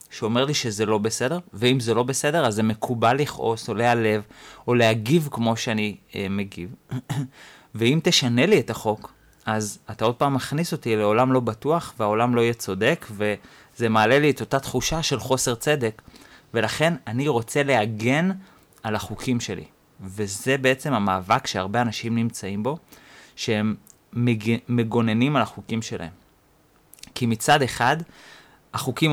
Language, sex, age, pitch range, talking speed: Hebrew, male, 30-49, 105-135 Hz, 150 wpm